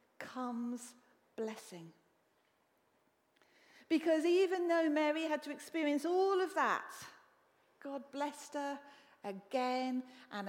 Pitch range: 230-295 Hz